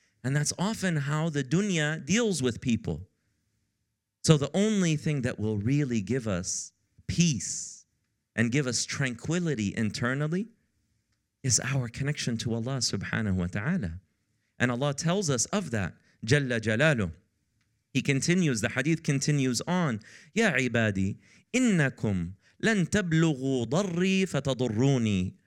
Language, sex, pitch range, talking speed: English, male, 105-170 Hz, 125 wpm